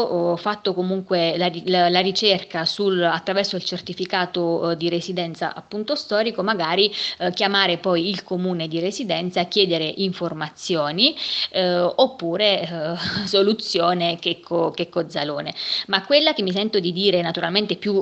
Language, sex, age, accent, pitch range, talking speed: Italian, female, 20-39, native, 170-200 Hz, 145 wpm